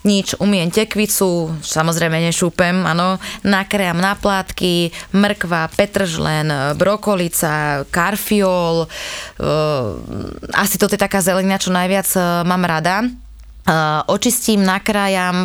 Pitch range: 175-205 Hz